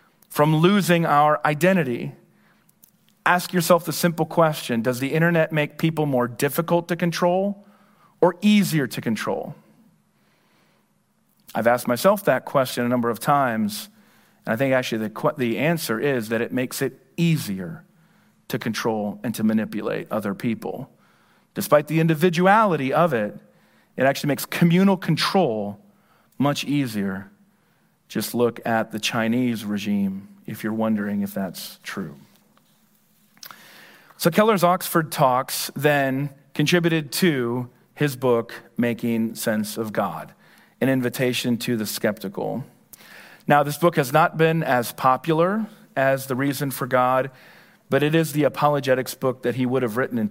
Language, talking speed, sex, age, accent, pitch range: English, 140 wpm, male, 40-59, American, 120-170 Hz